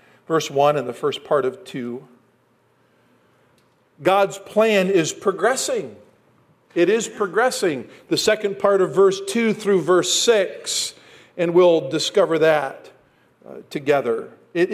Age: 50-69